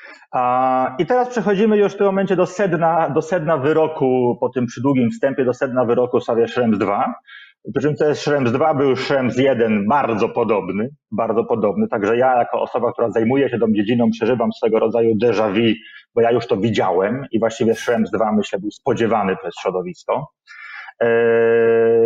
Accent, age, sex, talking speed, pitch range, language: native, 40-59, male, 170 wpm, 120-175 Hz, Polish